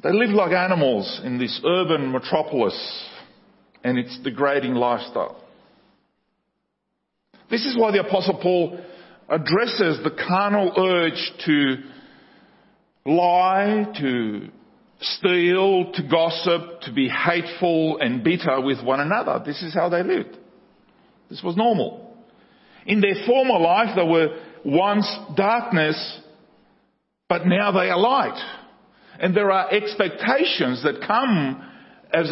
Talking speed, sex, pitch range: 120 wpm, male, 150-205 Hz